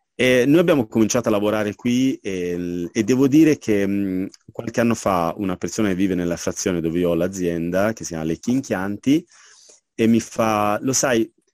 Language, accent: Italian, native